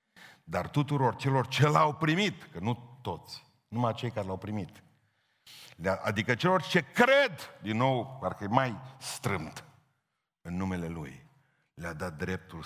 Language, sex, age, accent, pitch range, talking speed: Romanian, male, 50-69, native, 95-120 Hz, 140 wpm